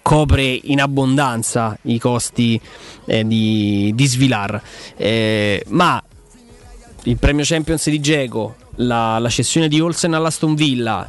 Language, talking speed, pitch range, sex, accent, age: Italian, 125 wpm, 125-160 Hz, male, native, 20-39